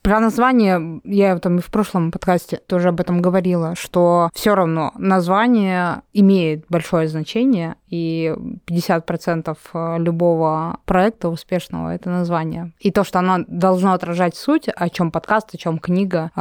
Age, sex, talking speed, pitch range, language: 20-39, female, 145 wpm, 160-180 Hz, Russian